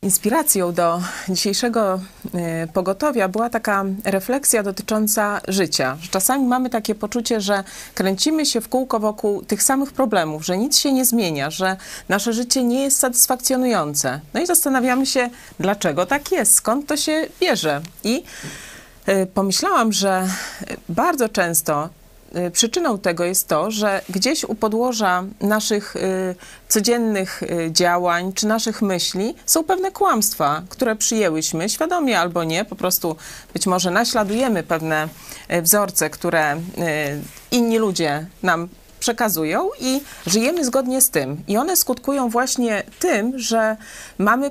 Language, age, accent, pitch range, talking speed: Polish, 30-49, native, 175-250 Hz, 130 wpm